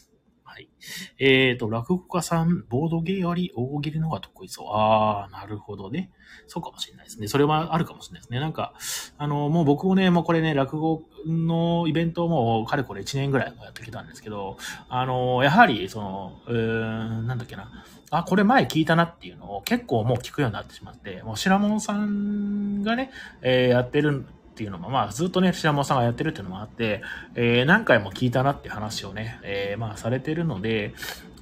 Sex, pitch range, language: male, 115-170 Hz, Japanese